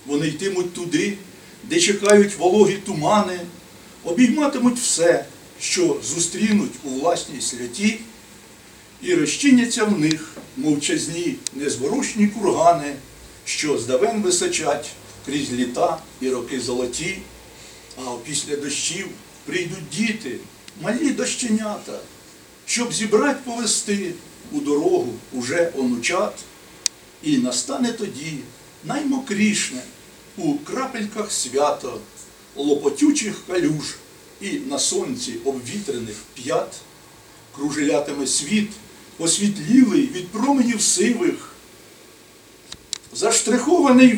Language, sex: Ukrainian, male